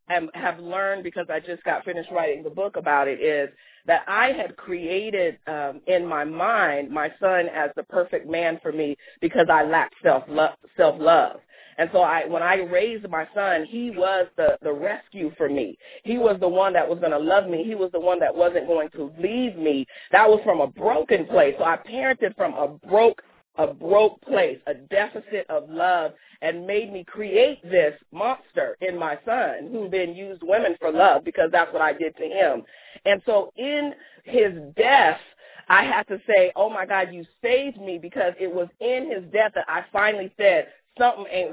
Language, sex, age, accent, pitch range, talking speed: English, female, 40-59, American, 175-235 Hz, 200 wpm